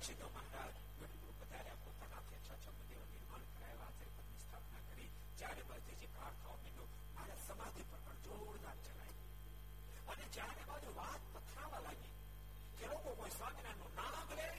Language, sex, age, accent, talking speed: Gujarati, male, 60-79, native, 105 wpm